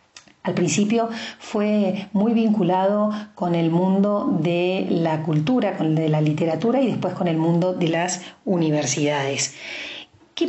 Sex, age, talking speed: female, 40-59, 145 wpm